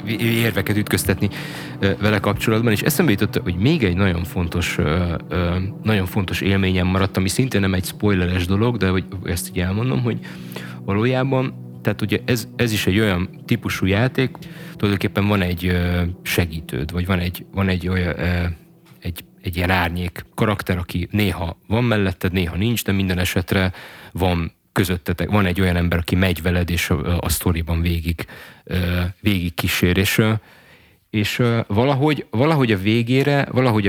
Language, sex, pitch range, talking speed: Hungarian, male, 90-110 Hz, 150 wpm